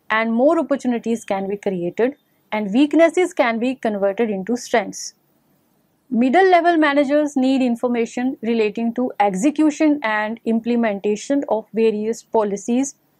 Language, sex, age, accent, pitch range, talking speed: English, female, 30-49, Indian, 215-275 Hz, 120 wpm